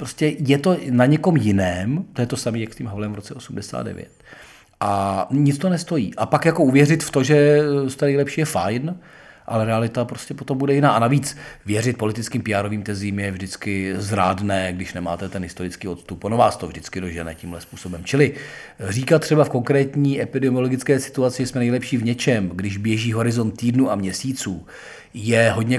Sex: male